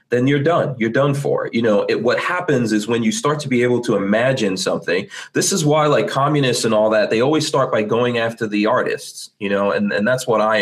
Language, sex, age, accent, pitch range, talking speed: English, male, 30-49, American, 105-130 Hz, 250 wpm